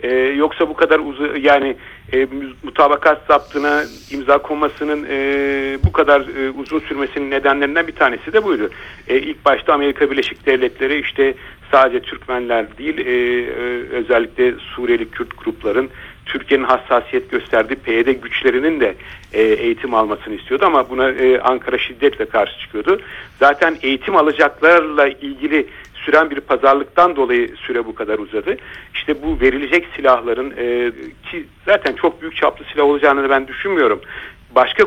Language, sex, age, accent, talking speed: Turkish, male, 60-79, native, 140 wpm